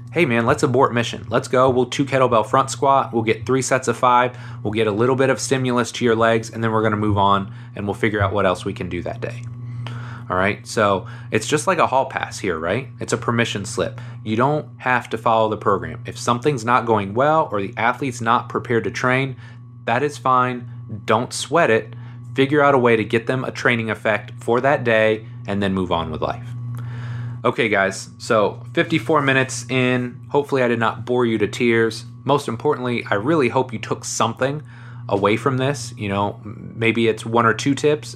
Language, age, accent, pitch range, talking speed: English, 30-49, American, 110-125 Hz, 215 wpm